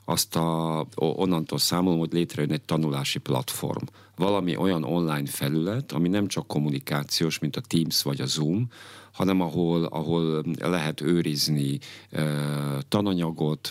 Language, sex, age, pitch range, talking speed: Hungarian, male, 50-69, 75-90 Hz, 120 wpm